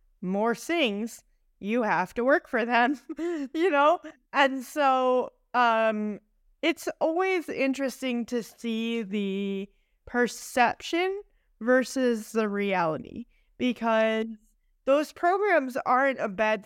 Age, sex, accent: 20-39, female, American